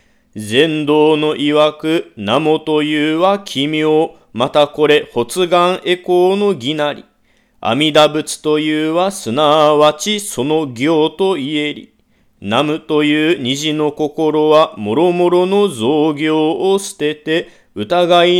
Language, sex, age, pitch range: Japanese, male, 40-59, 150-175 Hz